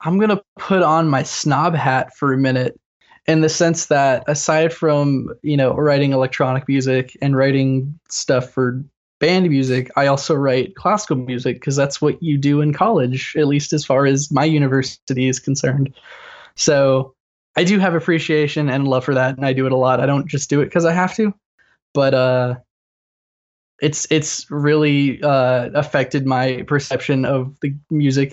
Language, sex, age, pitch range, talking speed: English, male, 10-29, 135-165 Hz, 180 wpm